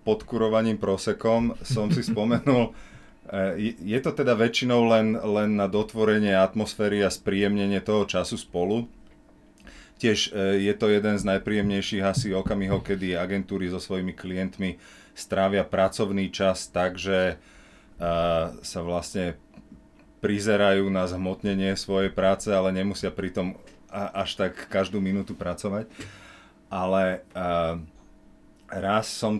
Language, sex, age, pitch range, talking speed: English, male, 30-49, 85-100 Hz, 110 wpm